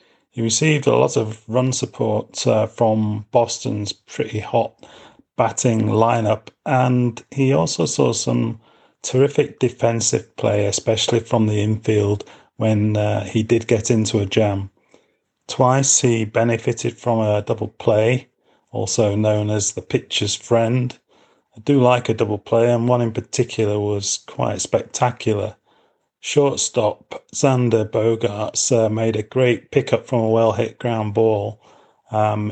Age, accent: 30-49, British